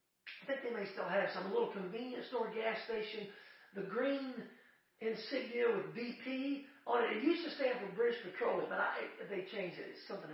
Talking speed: 205 wpm